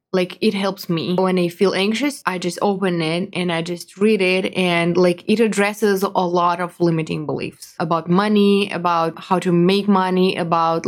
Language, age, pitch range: English, 20-39, 170-195 Hz